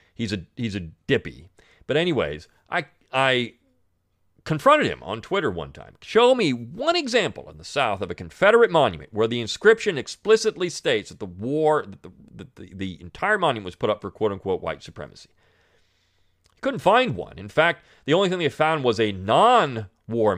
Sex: male